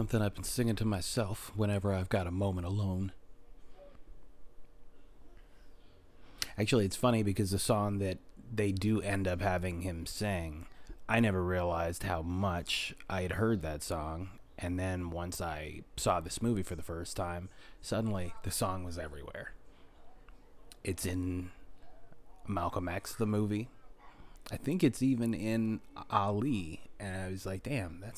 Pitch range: 90-110 Hz